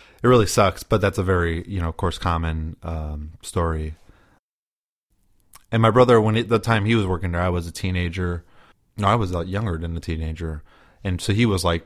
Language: English